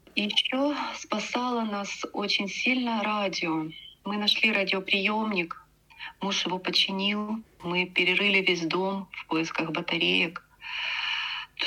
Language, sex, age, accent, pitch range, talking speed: Russian, female, 30-49, native, 180-230 Hz, 105 wpm